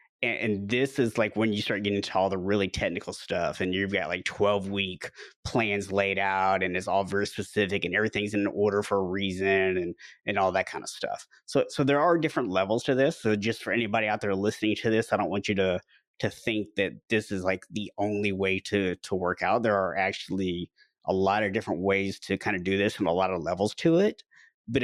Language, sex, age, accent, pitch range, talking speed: English, male, 30-49, American, 100-120 Hz, 235 wpm